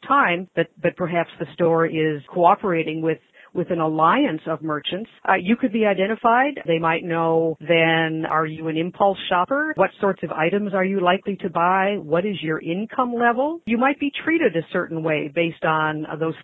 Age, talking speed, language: 50-69, 190 wpm, English